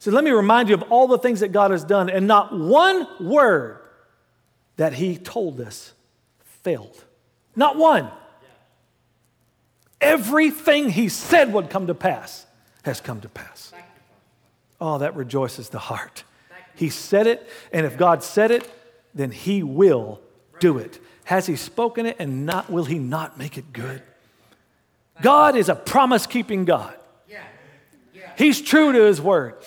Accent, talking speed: American, 150 wpm